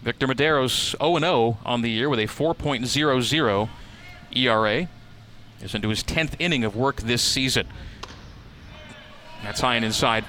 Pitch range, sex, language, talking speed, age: 115-140 Hz, male, English, 135 wpm, 40-59